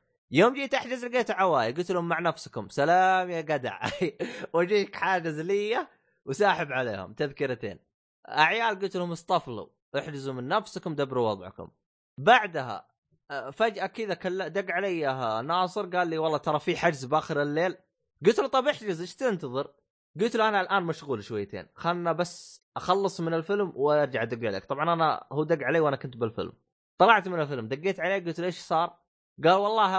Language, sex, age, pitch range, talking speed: Arabic, male, 20-39, 140-195 Hz, 160 wpm